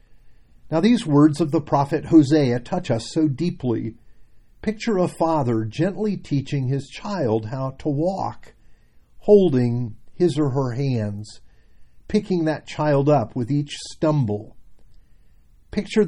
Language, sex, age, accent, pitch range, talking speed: English, male, 50-69, American, 110-165 Hz, 125 wpm